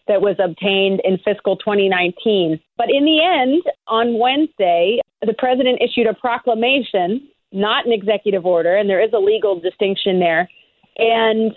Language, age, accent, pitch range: English, 40-59, American, 205-250 Hz